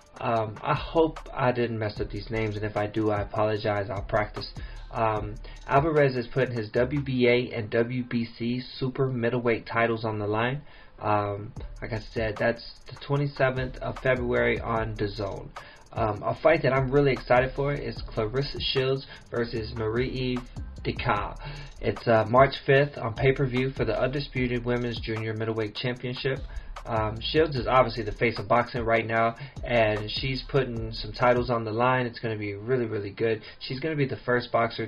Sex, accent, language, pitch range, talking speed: male, American, English, 110-130 Hz, 175 wpm